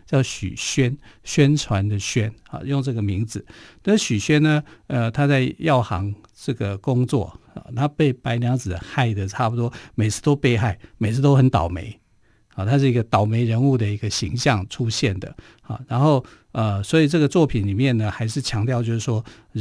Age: 50-69